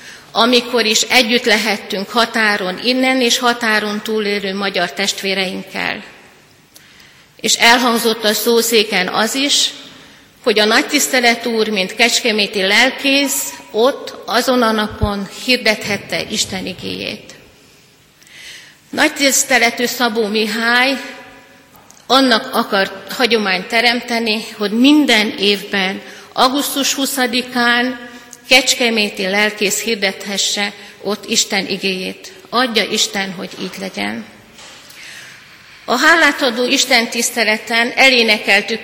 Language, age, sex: Hungarian, 50-69, female